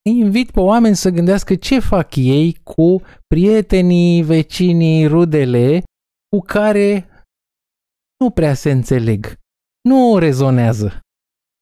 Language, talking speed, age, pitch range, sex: Romanian, 105 wpm, 20-39, 140-210 Hz, male